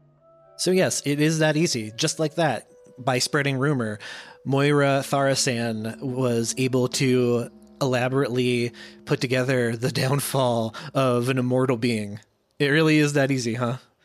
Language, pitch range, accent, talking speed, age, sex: English, 120-150 Hz, American, 135 wpm, 30-49, male